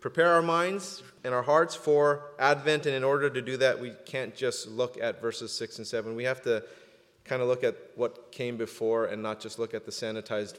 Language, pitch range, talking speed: English, 125-150 Hz, 225 wpm